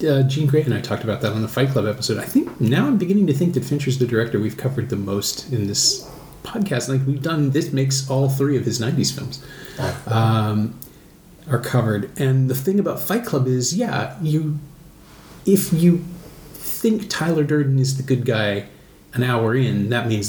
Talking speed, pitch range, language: 200 wpm, 110-150 Hz, English